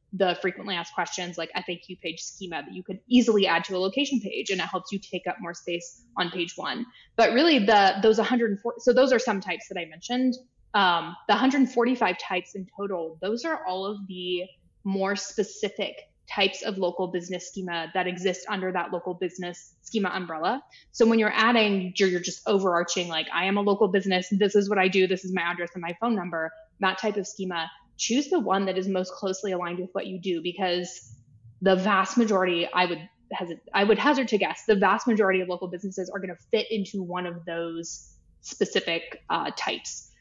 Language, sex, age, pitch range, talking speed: English, female, 20-39, 175-210 Hz, 205 wpm